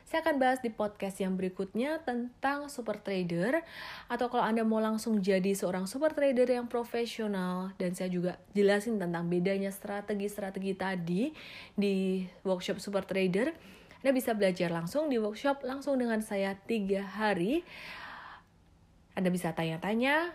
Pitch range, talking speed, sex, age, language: 180-235 Hz, 140 wpm, female, 30-49, Indonesian